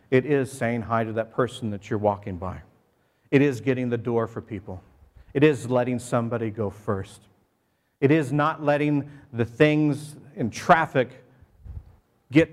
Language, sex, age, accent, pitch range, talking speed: English, male, 50-69, American, 115-160 Hz, 160 wpm